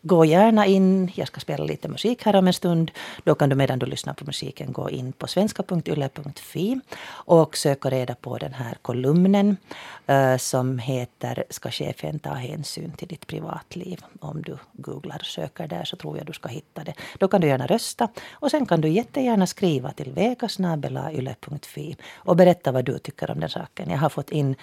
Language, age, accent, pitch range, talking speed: Finnish, 40-59, native, 140-190 Hz, 190 wpm